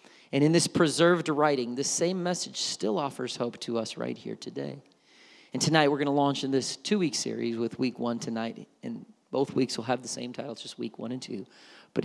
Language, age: English, 40-59